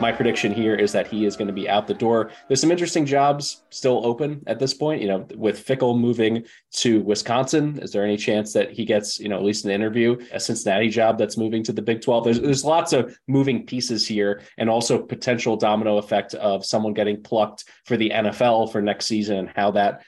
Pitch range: 105-125 Hz